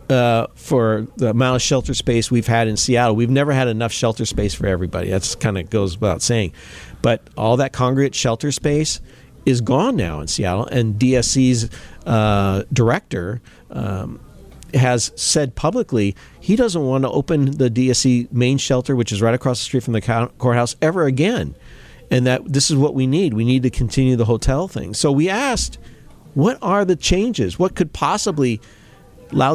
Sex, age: male, 40-59